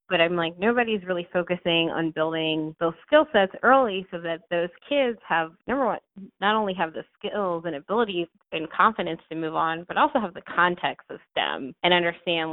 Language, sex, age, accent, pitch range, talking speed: English, female, 20-39, American, 160-190 Hz, 190 wpm